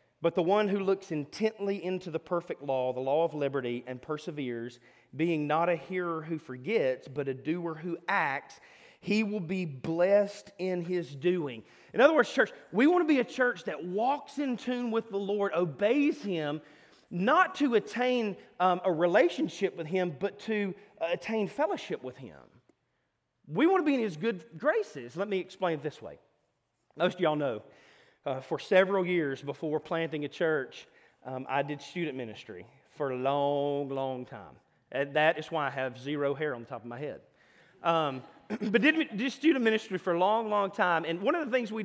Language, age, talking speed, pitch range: English, 30-49, 190 wpm, 145-210 Hz